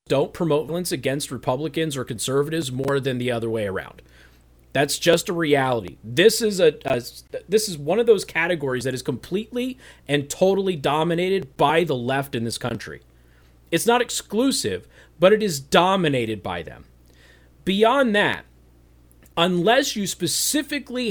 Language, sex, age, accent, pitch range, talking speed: English, male, 40-59, American, 130-220 Hz, 150 wpm